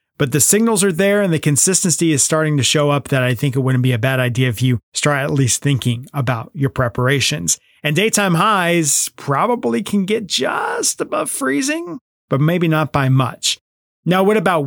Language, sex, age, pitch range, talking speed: English, male, 30-49, 140-175 Hz, 195 wpm